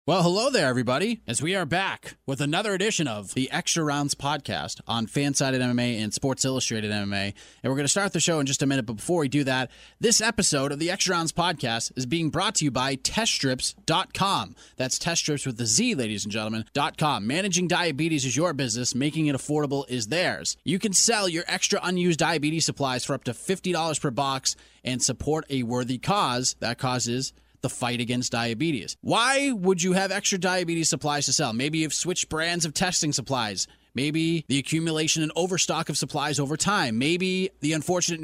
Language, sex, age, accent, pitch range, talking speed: English, male, 30-49, American, 135-180 Hz, 195 wpm